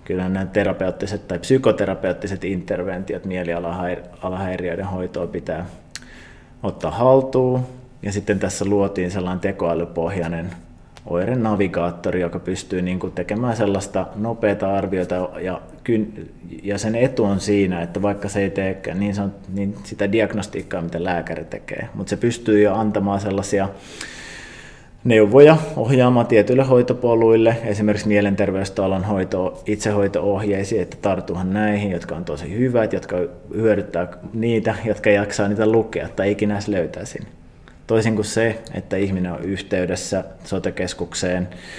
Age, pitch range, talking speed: 30-49, 90-105 Hz, 110 wpm